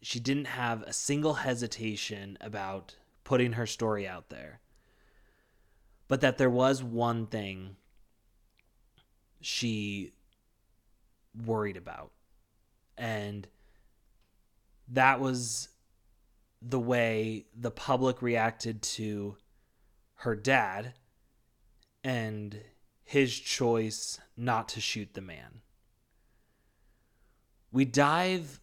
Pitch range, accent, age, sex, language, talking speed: 105-125 Hz, American, 20-39, male, English, 90 wpm